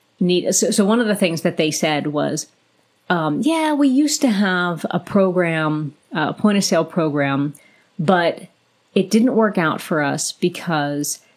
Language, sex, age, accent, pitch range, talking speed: English, female, 30-49, American, 160-205 Hz, 165 wpm